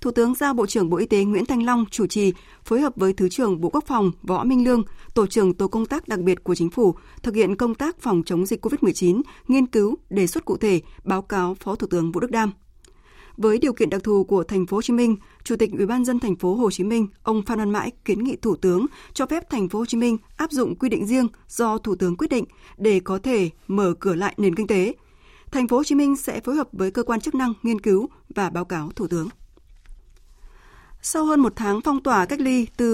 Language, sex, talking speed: Vietnamese, female, 255 wpm